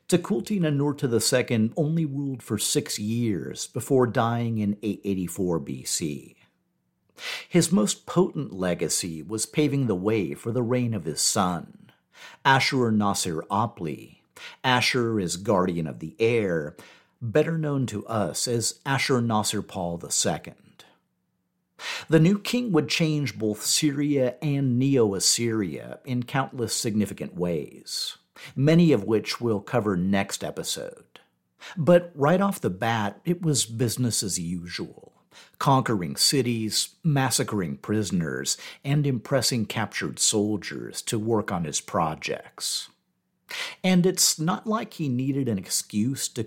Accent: American